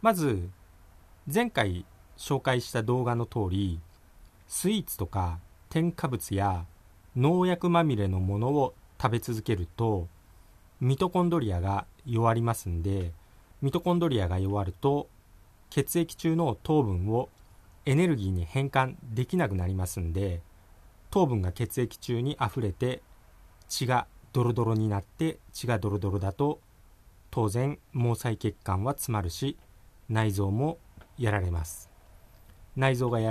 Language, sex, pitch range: Japanese, male, 90-130 Hz